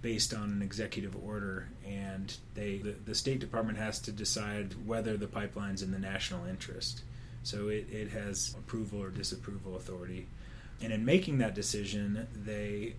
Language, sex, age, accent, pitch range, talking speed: English, male, 30-49, American, 100-120 Hz, 165 wpm